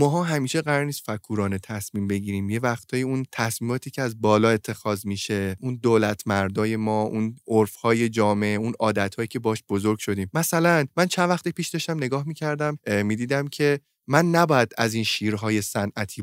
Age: 20-39